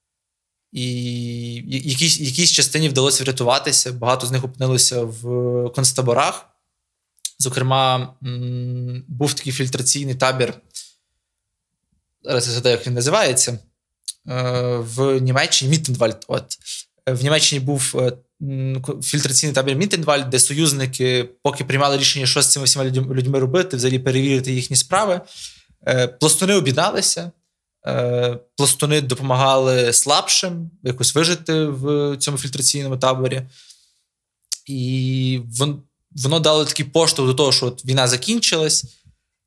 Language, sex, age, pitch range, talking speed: Ukrainian, male, 20-39, 125-150 Hz, 105 wpm